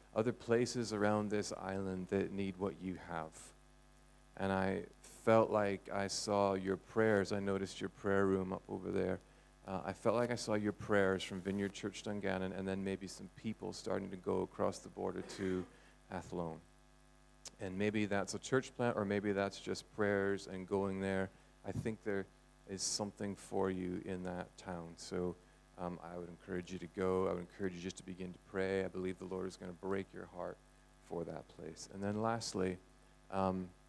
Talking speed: 195 wpm